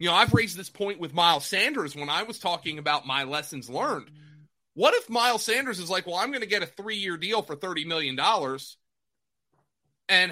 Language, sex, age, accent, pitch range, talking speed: English, male, 30-49, American, 160-215 Hz, 205 wpm